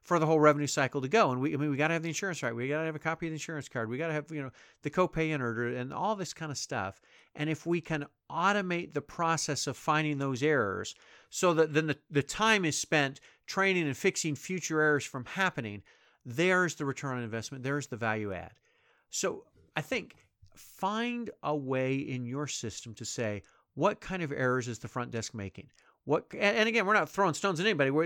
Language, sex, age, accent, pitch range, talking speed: English, male, 40-59, American, 125-160 Hz, 225 wpm